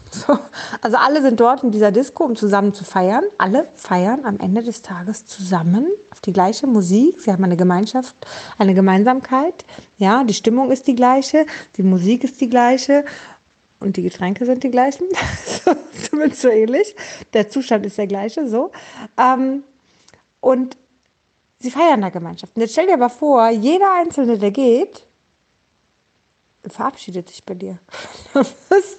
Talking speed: 155 wpm